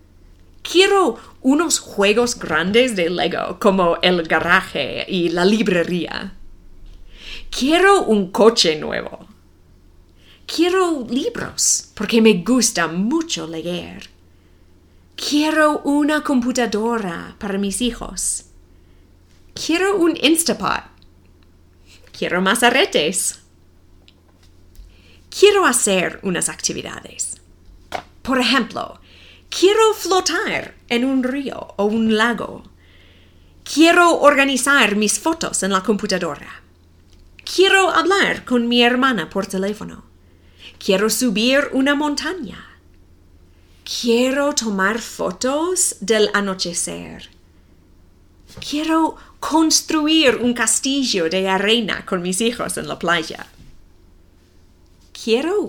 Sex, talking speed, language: female, 90 wpm, English